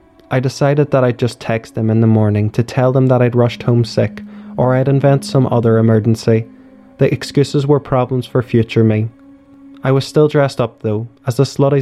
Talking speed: 205 wpm